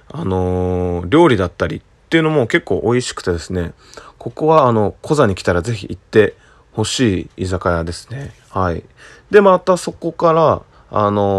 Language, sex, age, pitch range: Japanese, male, 20-39, 95-145 Hz